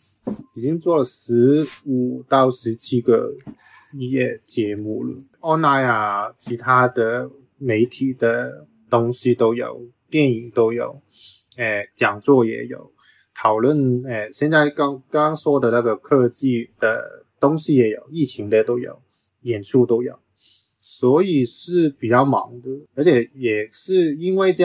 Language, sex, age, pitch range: Chinese, male, 20-39, 120-145 Hz